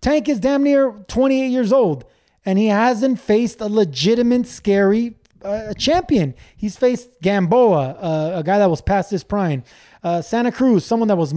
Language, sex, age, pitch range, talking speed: English, male, 20-39, 150-225 Hz, 175 wpm